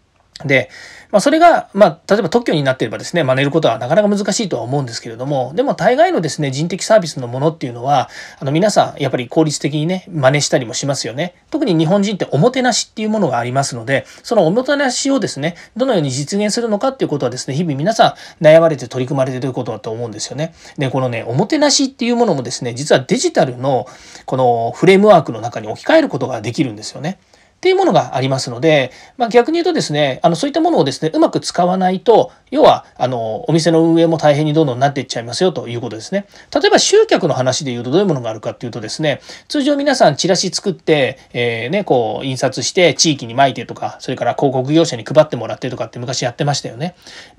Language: Japanese